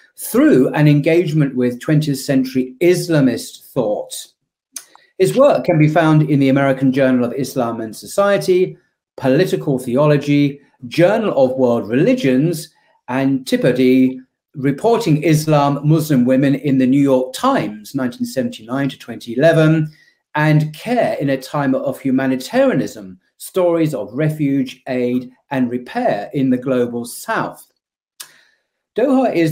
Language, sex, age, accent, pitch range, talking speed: English, male, 40-59, British, 130-175 Hz, 120 wpm